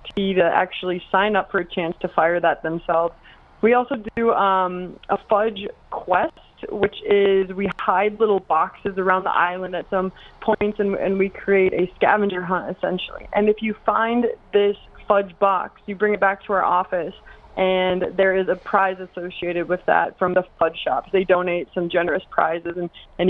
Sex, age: female, 20-39